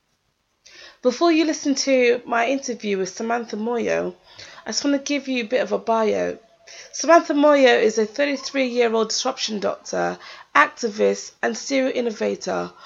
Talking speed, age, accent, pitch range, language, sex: 145 wpm, 20-39, British, 215-265 Hz, English, female